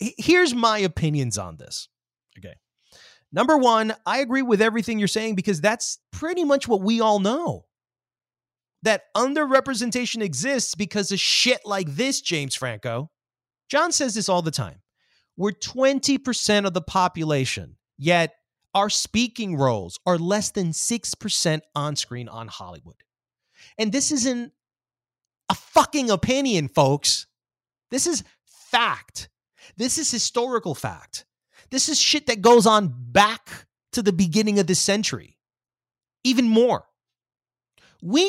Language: English